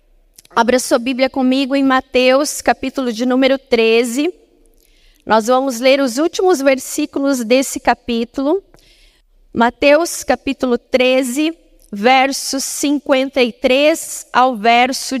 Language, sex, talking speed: Portuguese, female, 100 wpm